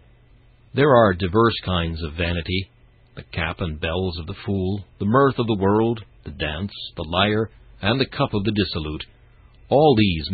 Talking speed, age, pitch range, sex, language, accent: 175 wpm, 60-79, 90-120 Hz, male, English, American